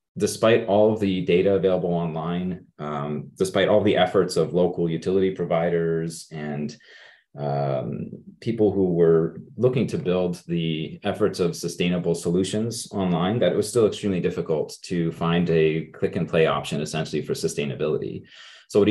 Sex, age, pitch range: male, 30-49, 80-100 Hz